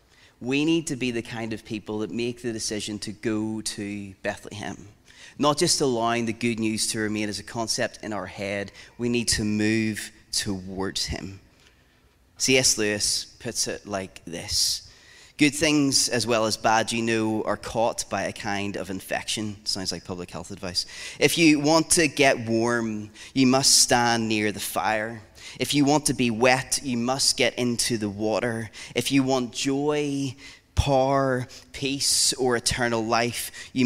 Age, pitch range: 30-49, 105-125 Hz